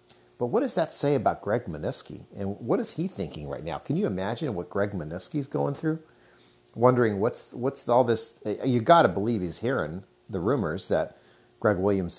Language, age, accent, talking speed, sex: English, 50-69, American, 190 wpm, male